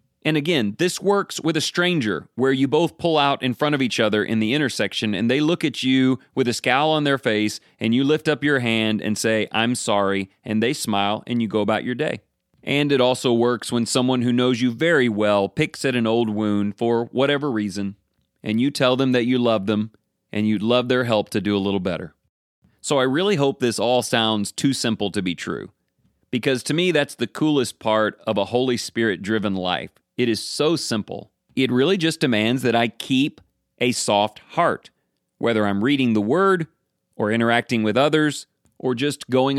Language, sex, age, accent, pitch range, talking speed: English, male, 30-49, American, 105-140 Hz, 210 wpm